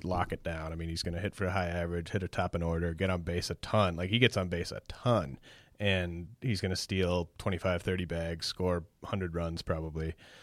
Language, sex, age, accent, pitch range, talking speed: English, male, 30-49, American, 90-100 Hz, 230 wpm